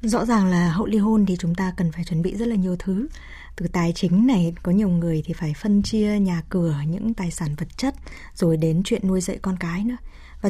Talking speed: 250 wpm